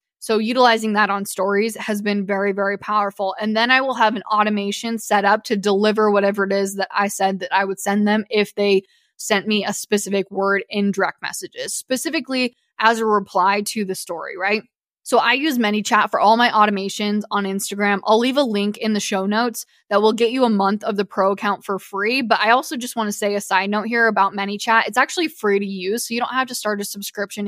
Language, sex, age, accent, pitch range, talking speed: English, female, 10-29, American, 200-230 Hz, 230 wpm